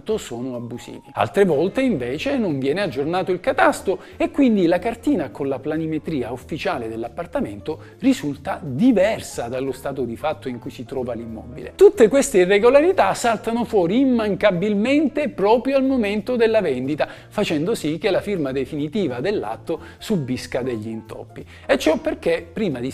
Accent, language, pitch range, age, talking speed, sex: native, Italian, 140-235 Hz, 50-69, 145 wpm, male